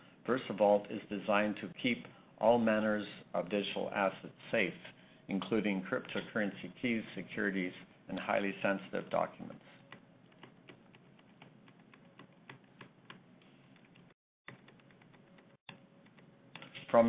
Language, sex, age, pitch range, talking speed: English, male, 60-79, 95-110 Hz, 70 wpm